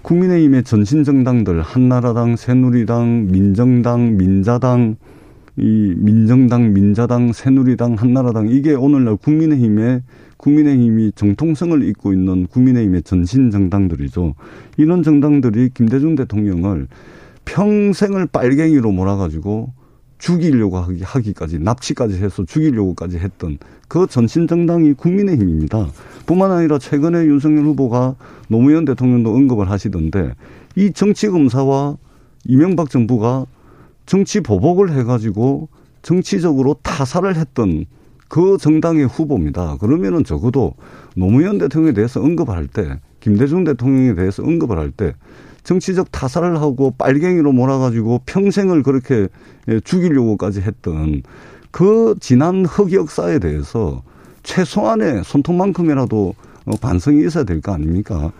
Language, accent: Korean, native